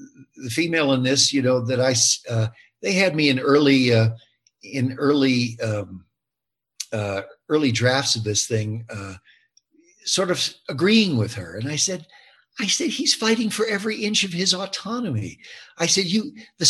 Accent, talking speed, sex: American, 170 wpm, male